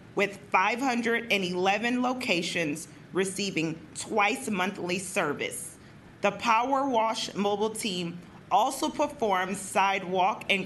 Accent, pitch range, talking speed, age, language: American, 185-230 Hz, 90 wpm, 40-59, English